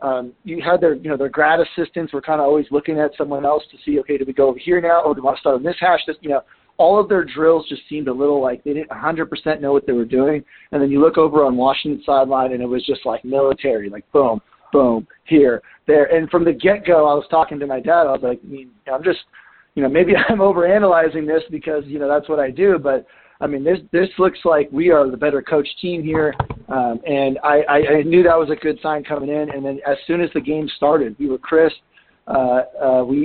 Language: English